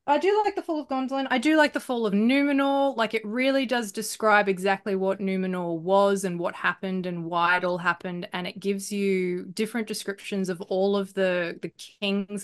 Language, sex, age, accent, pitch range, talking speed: English, female, 20-39, Australian, 165-210 Hz, 205 wpm